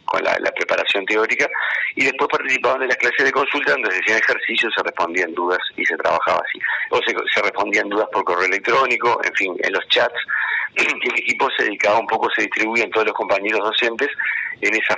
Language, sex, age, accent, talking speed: Spanish, male, 40-59, Argentinian, 210 wpm